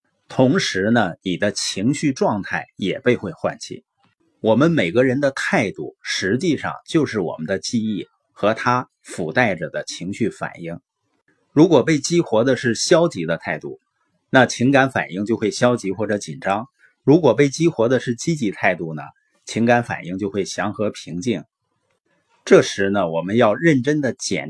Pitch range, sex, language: 105-150 Hz, male, Chinese